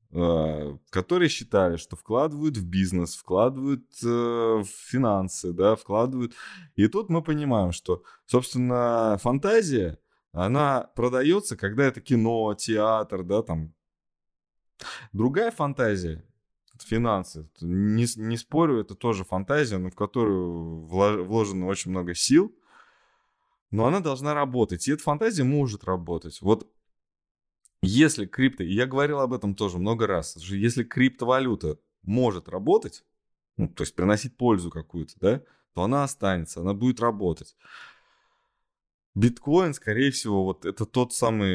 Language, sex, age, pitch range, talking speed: Russian, male, 20-39, 90-125 Hz, 125 wpm